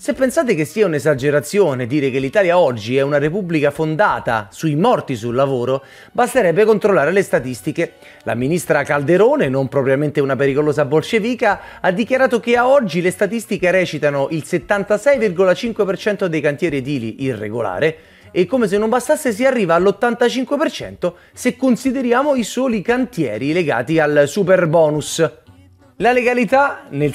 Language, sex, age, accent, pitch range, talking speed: Italian, male, 30-49, native, 140-205 Hz, 135 wpm